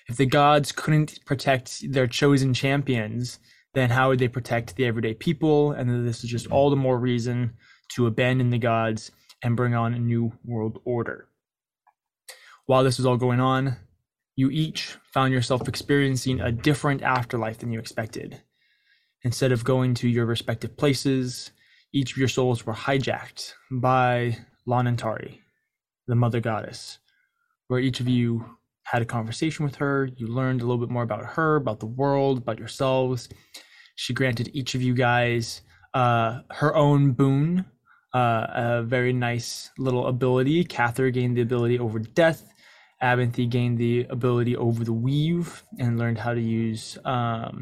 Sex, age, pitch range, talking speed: male, 20-39, 120-135 Hz, 160 wpm